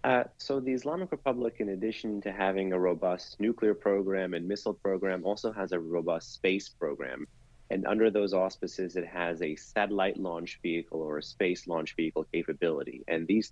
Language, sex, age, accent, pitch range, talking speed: English, male, 30-49, American, 90-105 Hz, 180 wpm